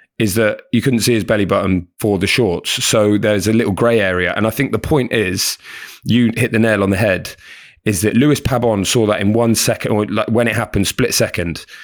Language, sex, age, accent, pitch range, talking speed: English, male, 20-39, British, 95-120 Hz, 235 wpm